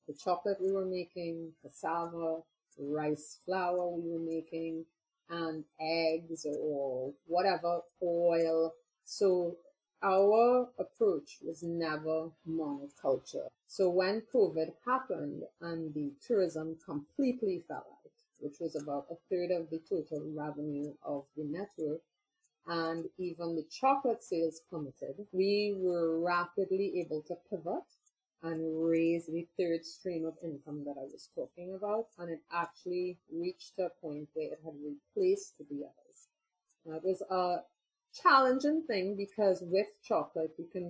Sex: female